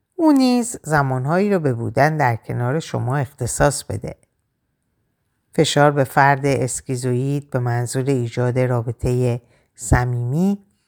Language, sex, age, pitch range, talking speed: Persian, female, 50-69, 120-180 Hz, 105 wpm